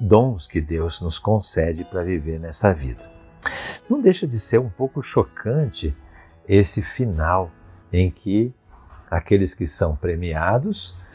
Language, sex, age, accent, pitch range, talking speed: Portuguese, male, 50-69, Brazilian, 80-100 Hz, 130 wpm